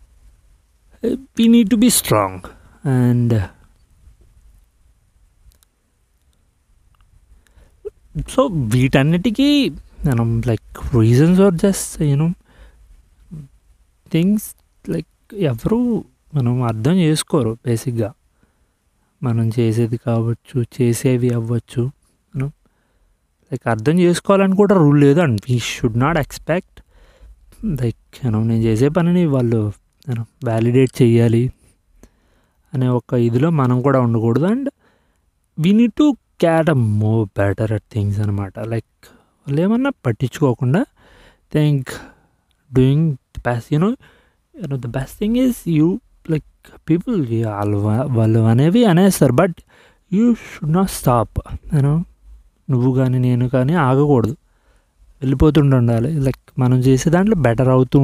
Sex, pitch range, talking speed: male, 110-160 Hz, 120 wpm